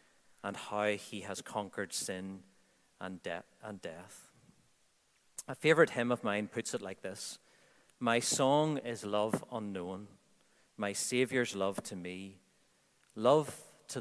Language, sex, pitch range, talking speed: English, male, 100-130 Hz, 135 wpm